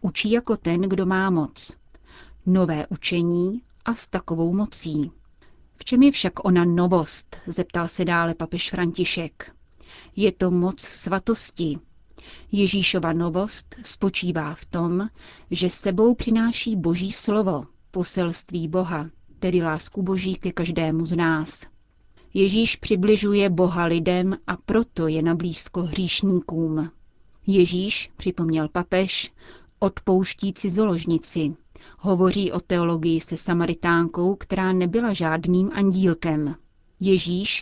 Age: 30-49